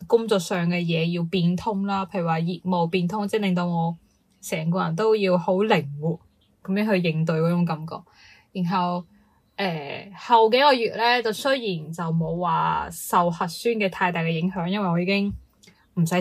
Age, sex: 10-29, female